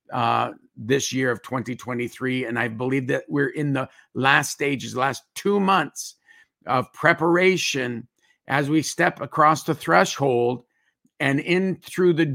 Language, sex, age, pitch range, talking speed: English, male, 50-69, 125-150 Hz, 140 wpm